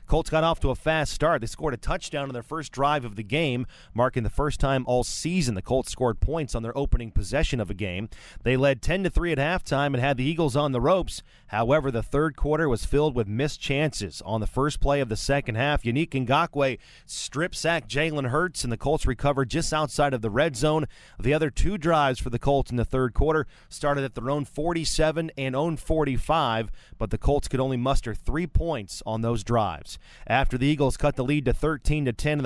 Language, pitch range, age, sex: English, 120-150 Hz, 30-49, male